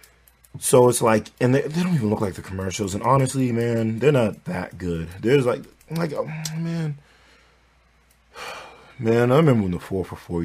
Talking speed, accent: 185 wpm, American